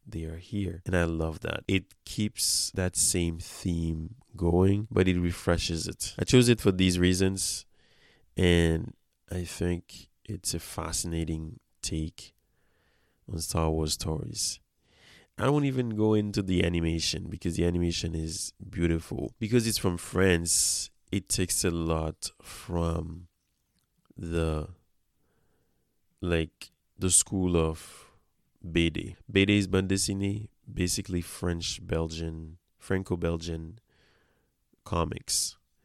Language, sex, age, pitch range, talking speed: English, male, 20-39, 80-95 Hz, 115 wpm